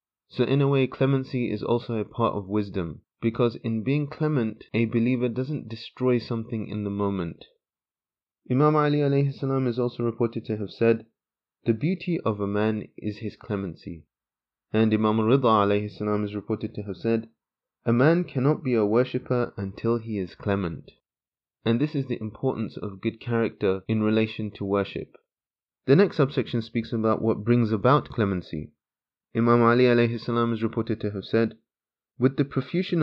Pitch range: 105-125 Hz